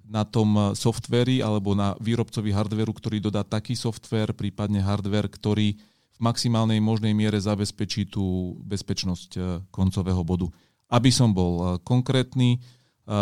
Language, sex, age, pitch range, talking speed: Slovak, male, 40-59, 100-115 Hz, 135 wpm